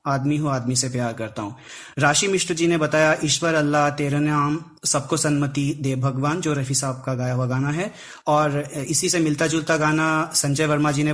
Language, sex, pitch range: Hindi, male, 140-165 Hz